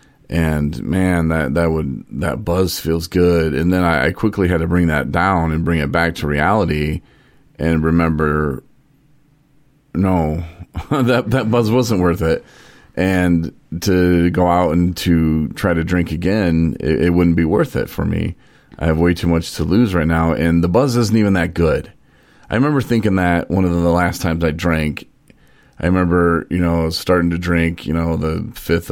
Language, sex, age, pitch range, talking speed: English, male, 40-59, 80-95 Hz, 185 wpm